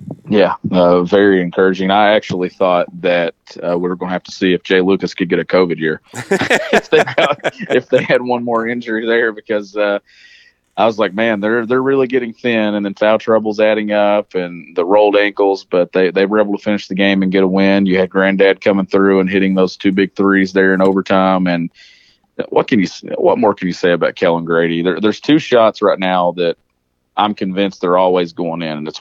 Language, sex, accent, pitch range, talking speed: English, male, American, 90-105 Hz, 225 wpm